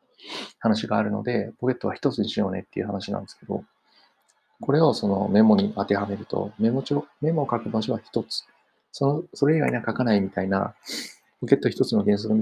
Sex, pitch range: male, 105-145 Hz